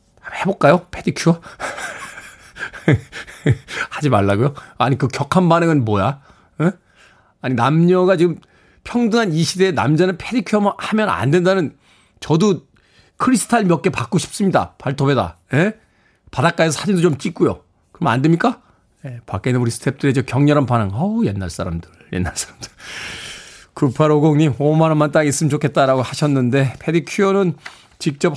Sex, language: male, Korean